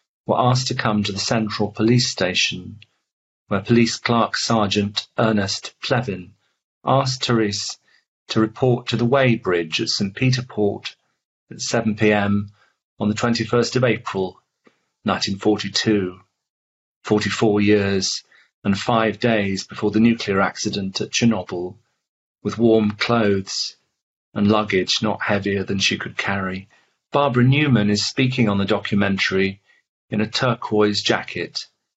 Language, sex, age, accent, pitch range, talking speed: English, male, 40-59, British, 100-115 Hz, 125 wpm